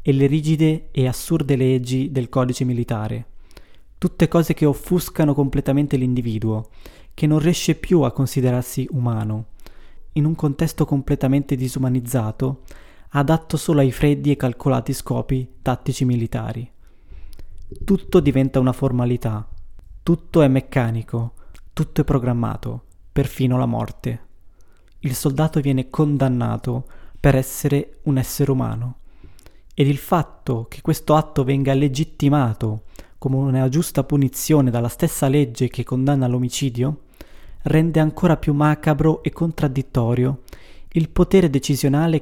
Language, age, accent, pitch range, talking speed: Italian, 20-39, native, 120-145 Hz, 120 wpm